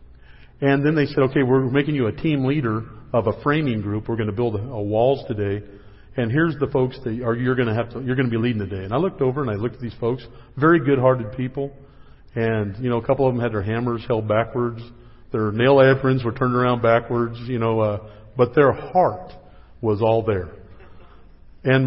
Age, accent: 40-59, American